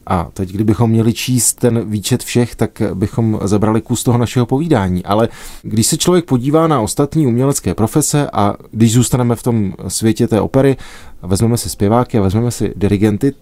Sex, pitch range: male, 105-125 Hz